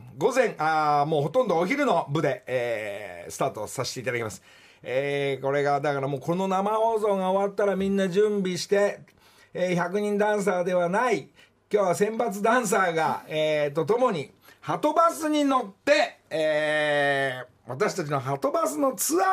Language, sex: Japanese, male